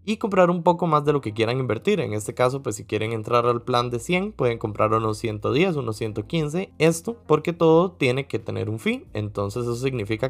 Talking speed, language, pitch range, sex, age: 220 wpm, Spanish, 110-150 Hz, male, 20-39